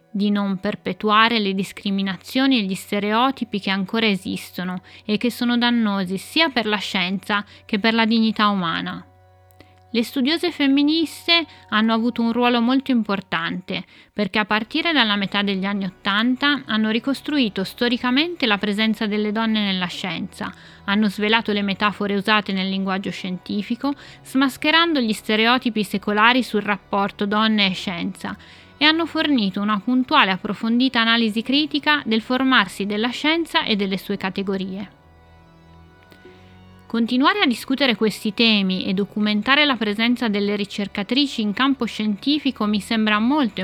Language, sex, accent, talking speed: Italian, female, native, 140 wpm